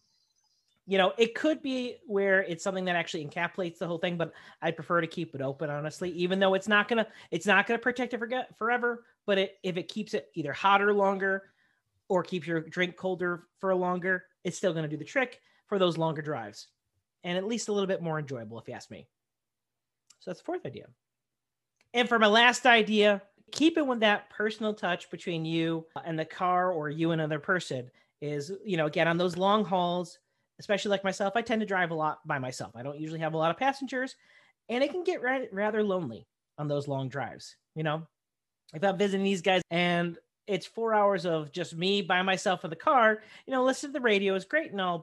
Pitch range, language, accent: 160-210 Hz, English, American